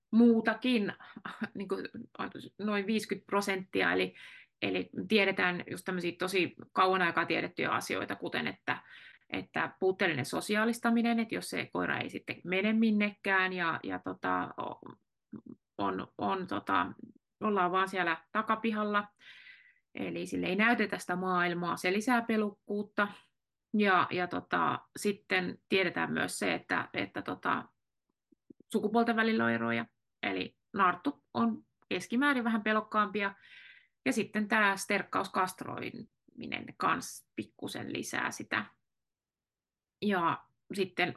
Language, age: Finnish, 30-49